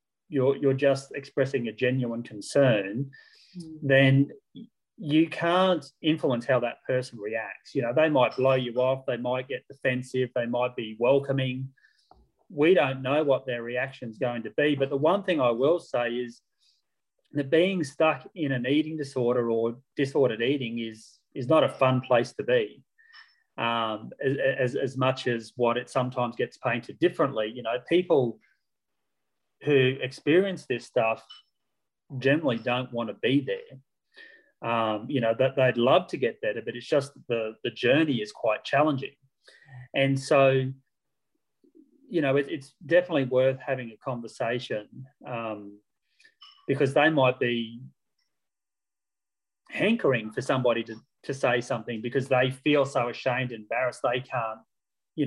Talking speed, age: 155 wpm, 30-49